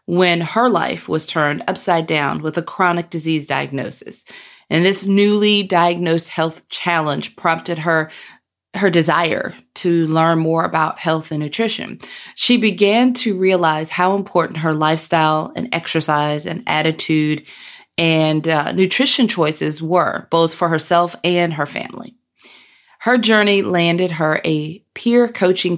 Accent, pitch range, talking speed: American, 160-195 Hz, 135 wpm